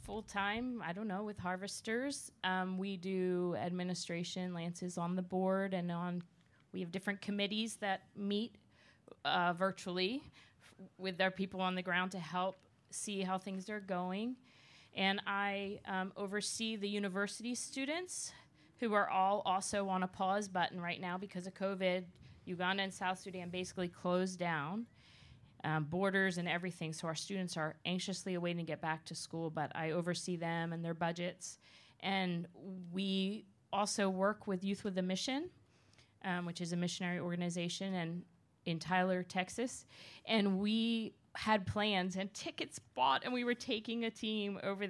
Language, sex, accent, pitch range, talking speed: English, female, American, 160-195 Hz, 160 wpm